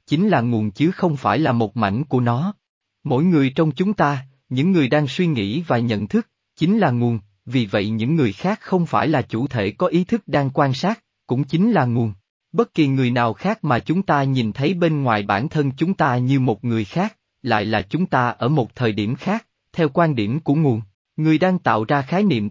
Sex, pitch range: male, 115-165 Hz